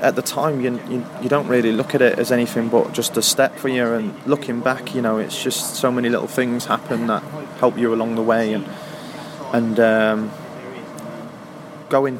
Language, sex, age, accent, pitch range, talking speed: English, male, 20-39, British, 110-125 Hz, 200 wpm